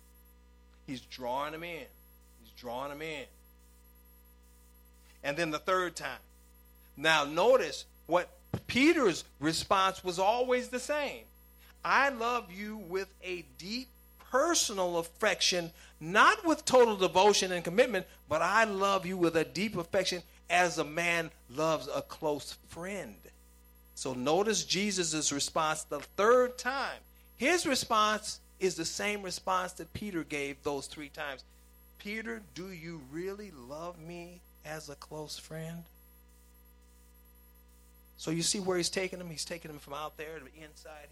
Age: 50-69